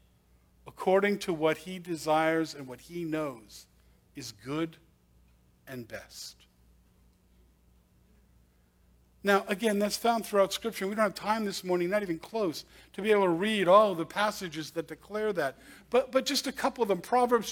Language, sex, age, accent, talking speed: English, male, 50-69, American, 160 wpm